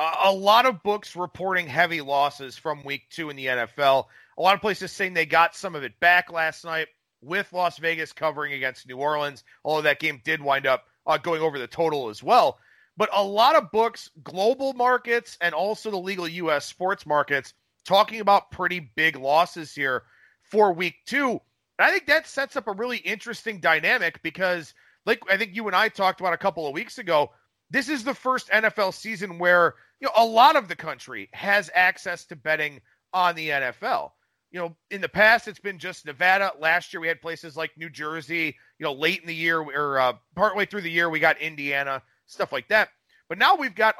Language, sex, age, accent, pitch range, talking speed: English, male, 40-59, American, 155-210 Hz, 210 wpm